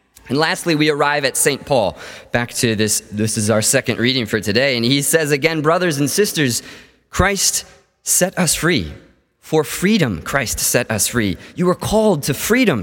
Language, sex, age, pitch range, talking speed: English, male, 20-39, 105-140 Hz, 180 wpm